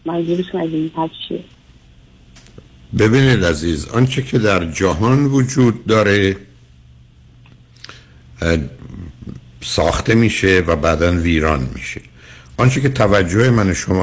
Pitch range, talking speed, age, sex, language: 80-105 Hz, 80 wpm, 60-79, male, Persian